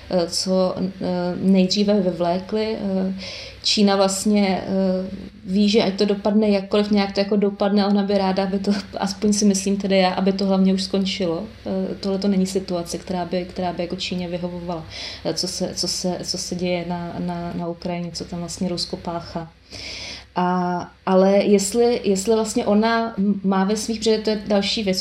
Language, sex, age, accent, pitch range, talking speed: Czech, female, 20-39, native, 180-200 Hz, 165 wpm